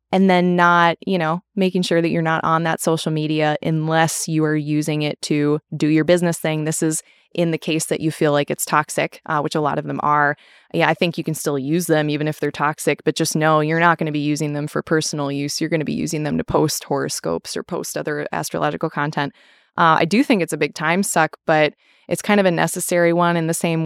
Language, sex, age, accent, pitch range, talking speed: English, female, 20-39, American, 150-175 Hz, 250 wpm